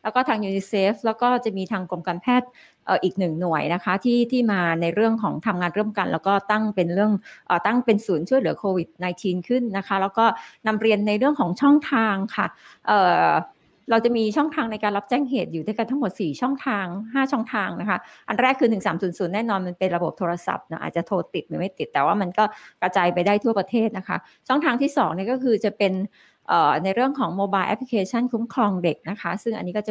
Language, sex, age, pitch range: Thai, female, 20-39, 185-240 Hz